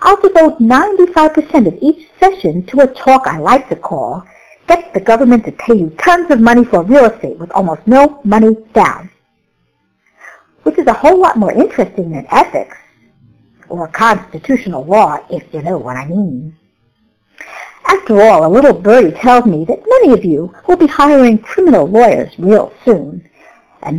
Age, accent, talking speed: 60-79, American, 170 wpm